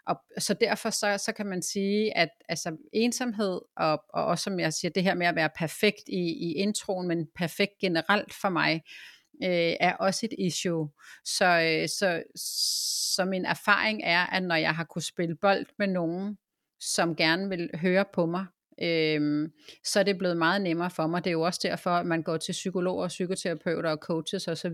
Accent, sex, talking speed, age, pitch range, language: native, female, 195 wpm, 30-49, 160-195 Hz, Danish